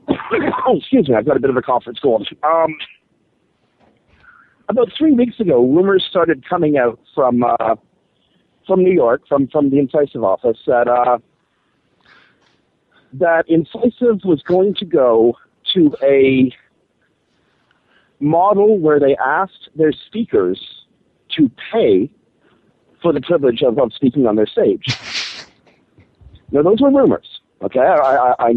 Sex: male